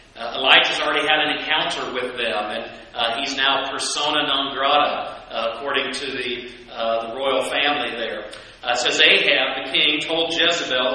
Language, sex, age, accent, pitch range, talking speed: English, male, 40-59, American, 140-185 Hz, 175 wpm